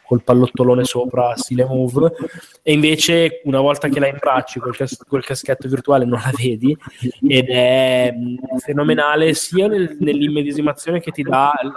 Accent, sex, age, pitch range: native, male, 20-39, 125-145 Hz